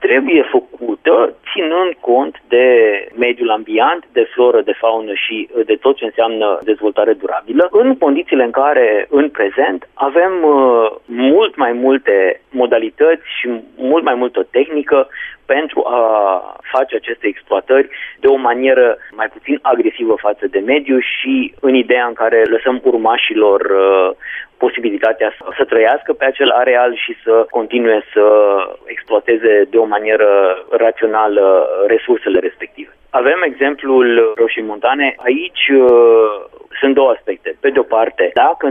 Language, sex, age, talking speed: Romanian, male, 30-49, 135 wpm